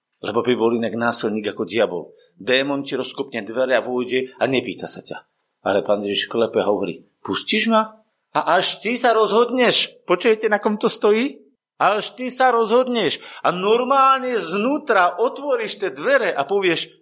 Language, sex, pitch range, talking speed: Slovak, male, 130-220 Hz, 165 wpm